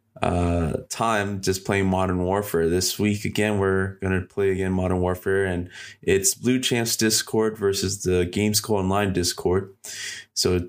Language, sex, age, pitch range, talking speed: English, male, 20-39, 95-110 Hz, 150 wpm